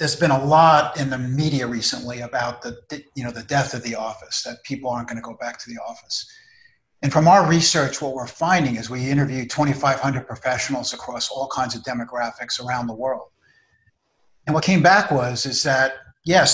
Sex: male